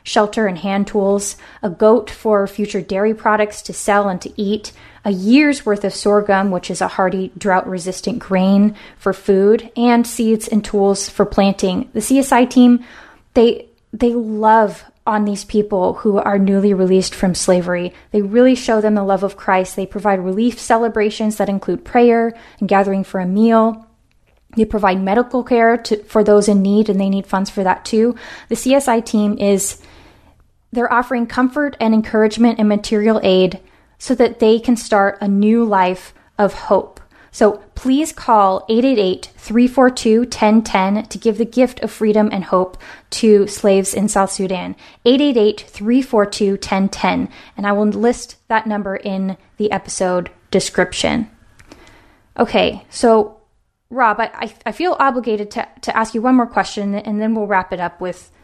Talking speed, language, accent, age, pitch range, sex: 160 wpm, English, American, 10-29, 195-230 Hz, female